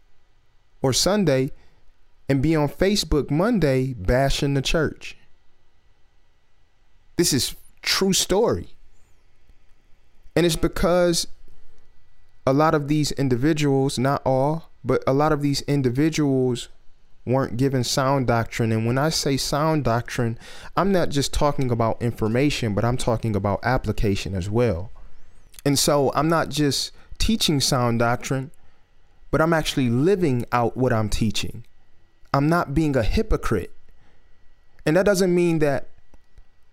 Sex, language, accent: male, English, American